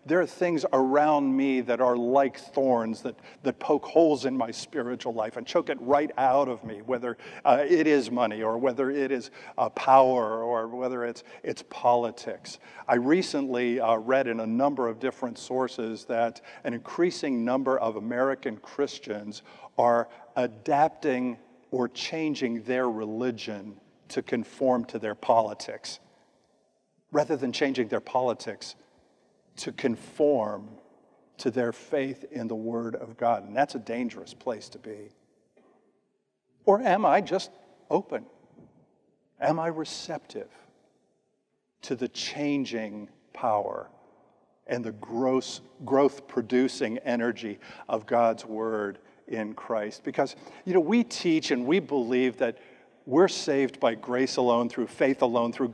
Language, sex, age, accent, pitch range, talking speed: English, male, 50-69, American, 115-135 Hz, 140 wpm